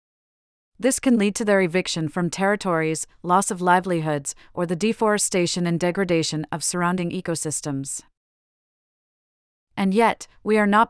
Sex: female